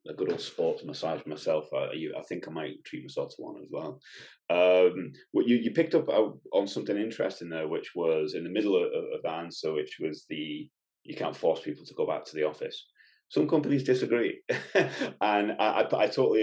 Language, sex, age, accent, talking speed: English, male, 30-49, British, 215 wpm